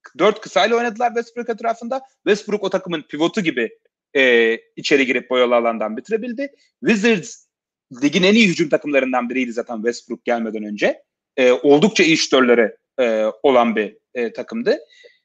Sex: male